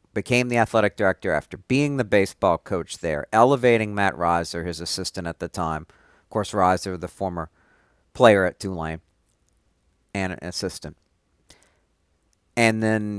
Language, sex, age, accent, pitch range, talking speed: English, male, 50-69, American, 85-110 Hz, 140 wpm